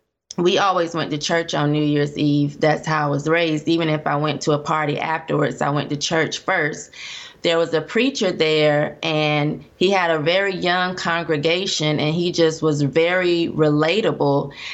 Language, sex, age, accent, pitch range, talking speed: English, female, 20-39, American, 150-175 Hz, 185 wpm